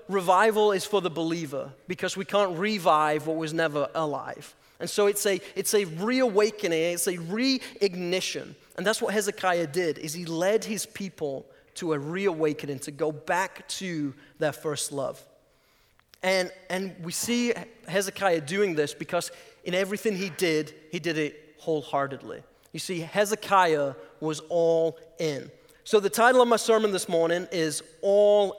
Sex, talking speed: male, 155 wpm